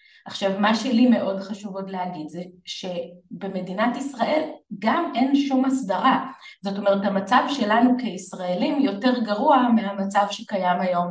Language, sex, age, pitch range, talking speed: Hebrew, female, 20-39, 195-245 Hz, 125 wpm